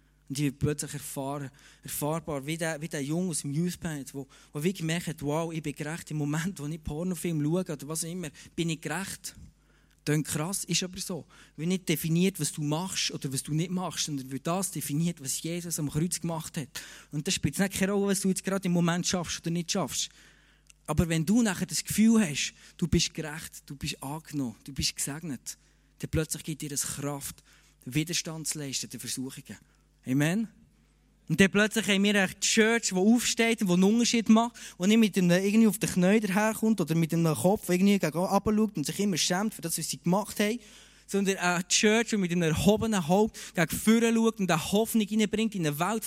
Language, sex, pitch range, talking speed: German, male, 155-200 Hz, 205 wpm